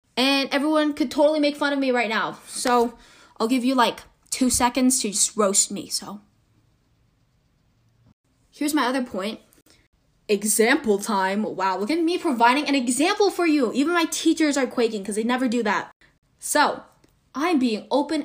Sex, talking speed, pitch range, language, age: female, 170 wpm, 210-275 Hz, English, 10-29